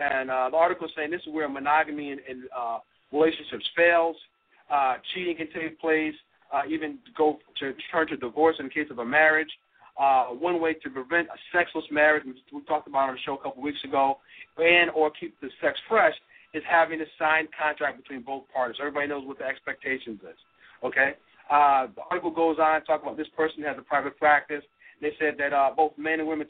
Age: 40-59